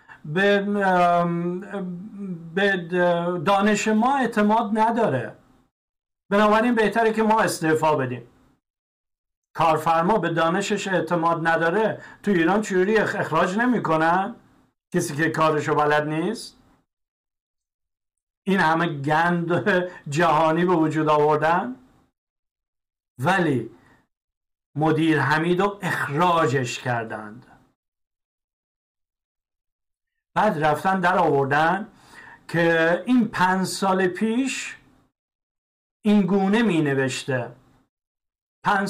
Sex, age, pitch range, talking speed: male, 50-69, 155-200 Hz, 80 wpm